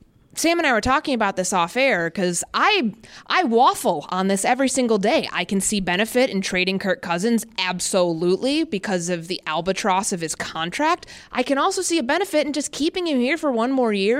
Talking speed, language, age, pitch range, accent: 205 wpm, English, 20-39, 185-265 Hz, American